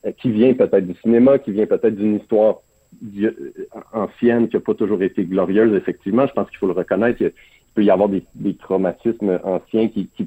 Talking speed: 205 wpm